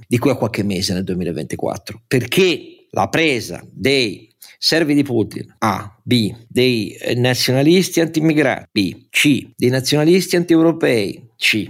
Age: 50-69